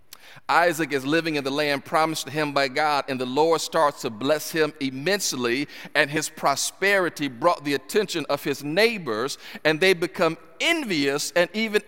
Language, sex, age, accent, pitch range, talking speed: English, male, 40-59, American, 195-255 Hz, 170 wpm